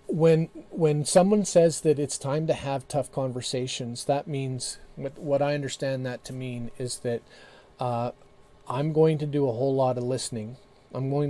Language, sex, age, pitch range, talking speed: English, male, 40-59, 125-150 Hz, 175 wpm